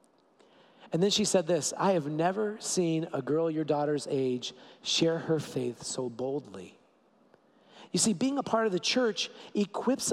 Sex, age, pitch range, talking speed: male, 40-59, 165-230 Hz, 165 wpm